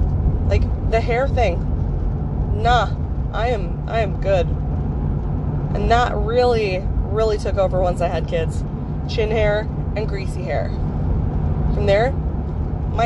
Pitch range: 80-85 Hz